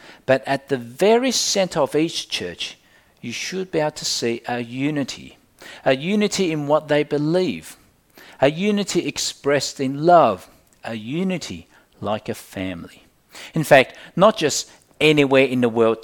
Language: English